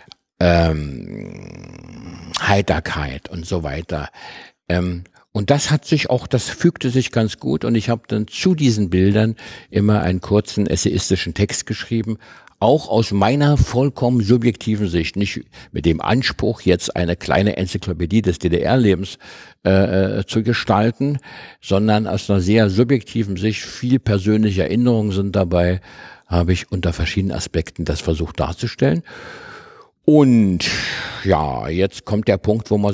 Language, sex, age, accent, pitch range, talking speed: German, male, 60-79, German, 85-110 Hz, 135 wpm